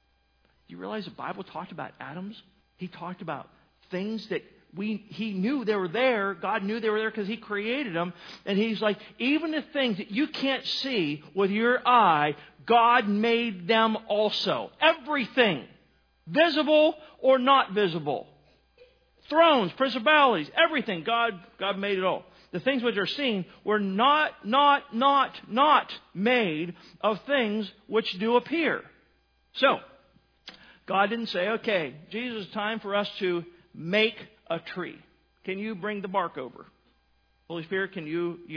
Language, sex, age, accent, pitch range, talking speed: English, male, 50-69, American, 160-220 Hz, 150 wpm